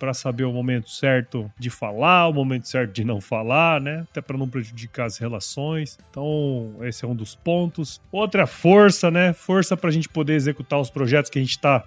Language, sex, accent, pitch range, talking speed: Portuguese, male, Brazilian, 135-180 Hz, 205 wpm